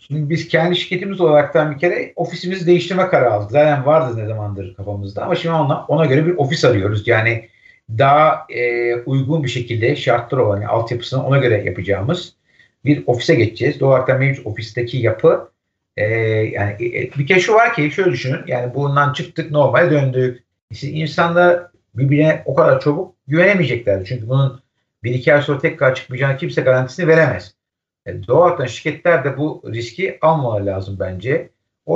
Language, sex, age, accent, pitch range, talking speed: Turkish, male, 50-69, native, 115-155 Hz, 165 wpm